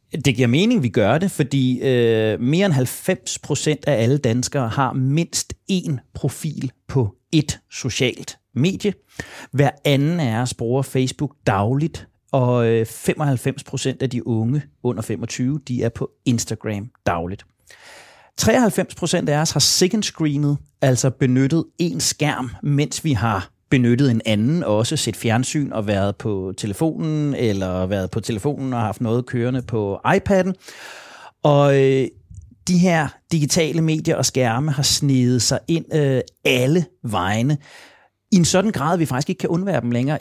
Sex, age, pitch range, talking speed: male, 30-49, 120-155 Hz, 150 wpm